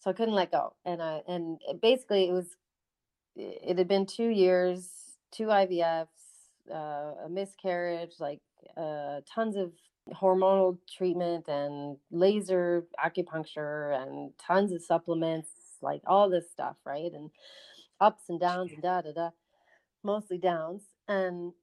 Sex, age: female, 30-49